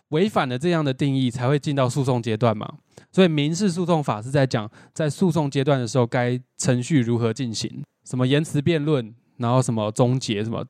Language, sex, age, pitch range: Chinese, male, 20-39, 115-150 Hz